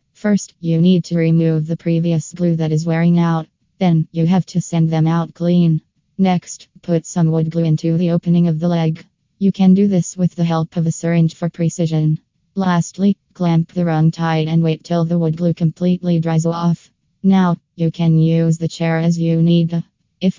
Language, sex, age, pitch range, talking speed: English, female, 20-39, 160-180 Hz, 195 wpm